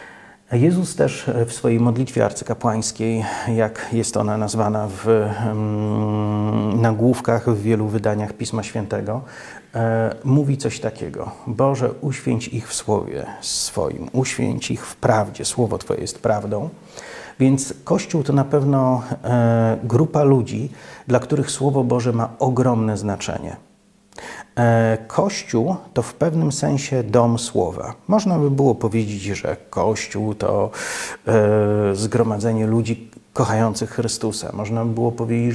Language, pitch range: Polish, 110-130 Hz